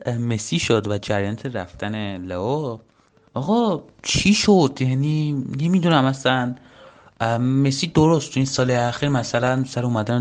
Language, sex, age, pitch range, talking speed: Persian, male, 30-49, 110-145 Hz, 130 wpm